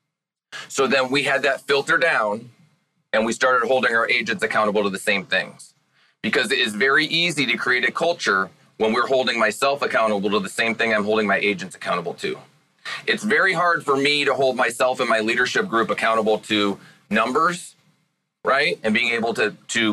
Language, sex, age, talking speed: English, male, 30-49, 190 wpm